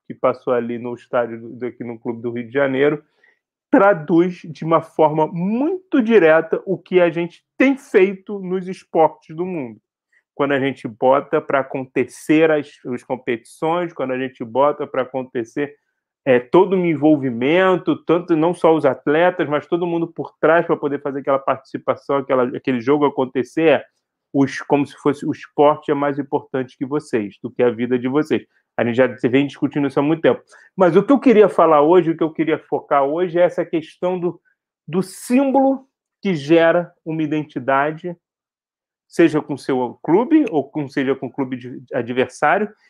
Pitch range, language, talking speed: 140-195 Hz, Portuguese, 180 wpm